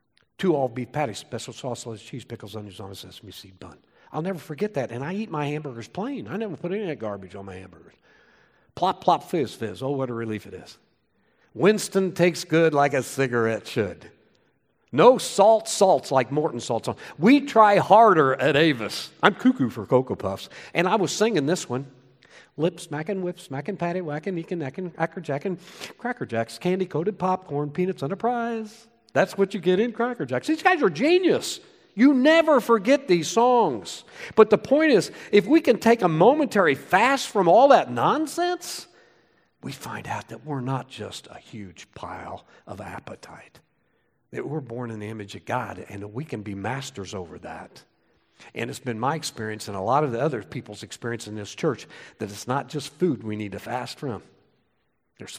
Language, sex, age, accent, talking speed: English, male, 50-69, American, 195 wpm